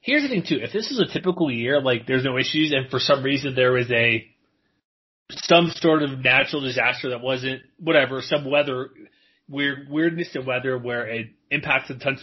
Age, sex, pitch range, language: 30-49, male, 125-160 Hz, English